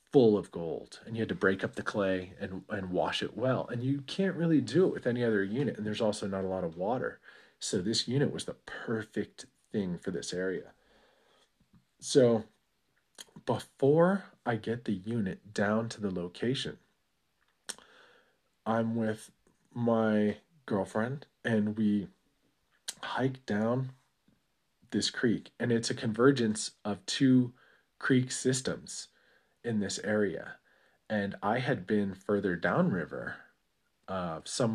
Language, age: English, 40-59